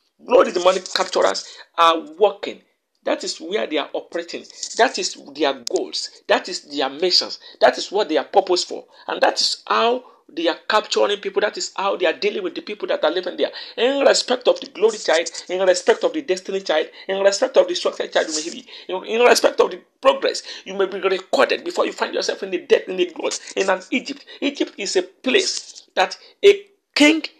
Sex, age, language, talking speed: male, 50-69, English, 210 wpm